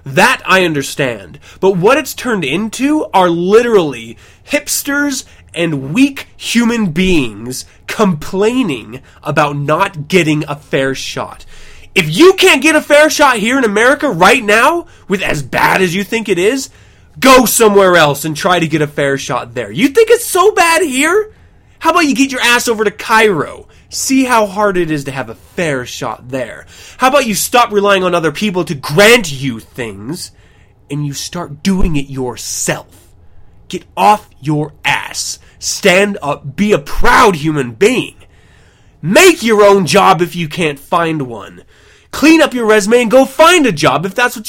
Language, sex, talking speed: English, male, 175 wpm